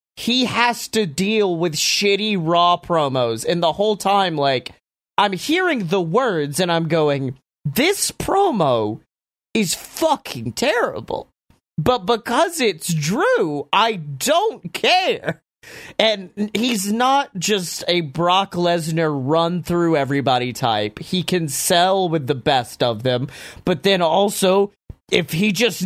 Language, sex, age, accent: English, male, 30-49, American